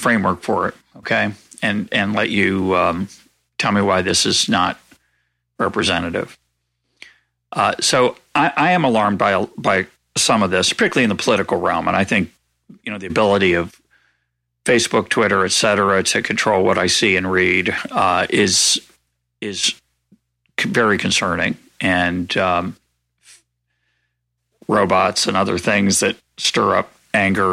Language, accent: English, American